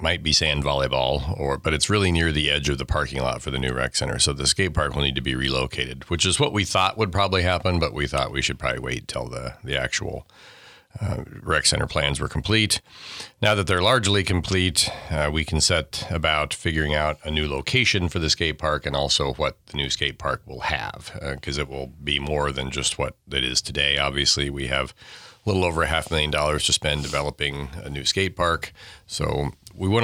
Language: English